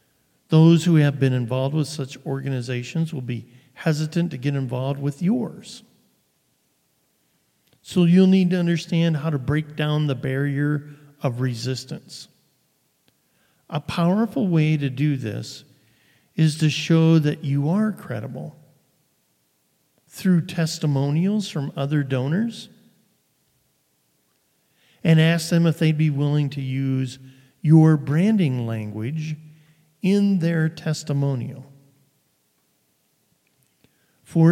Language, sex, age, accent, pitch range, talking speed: English, male, 50-69, American, 135-165 Hz, 110 wpm